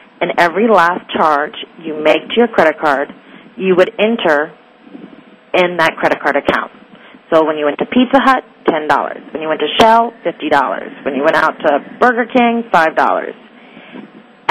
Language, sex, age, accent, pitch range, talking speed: English, female, 30-49, American, 165-245 Hz, 165 wpm